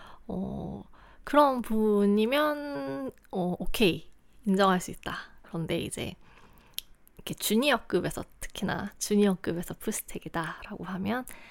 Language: Korean